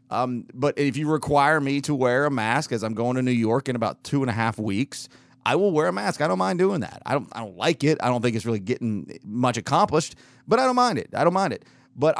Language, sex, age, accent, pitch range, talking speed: English, male, 30-49, American, 125-155 Hz, 280 wpm